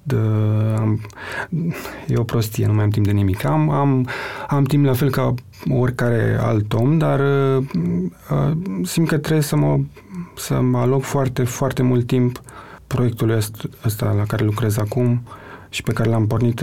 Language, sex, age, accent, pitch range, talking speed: Romanian, male, 30-49, native, 120-155 Hz, 165 wpm